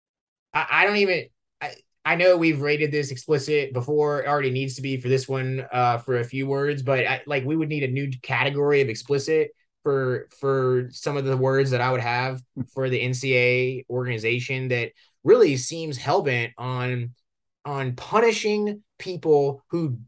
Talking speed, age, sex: 175 wpm, 20-39, male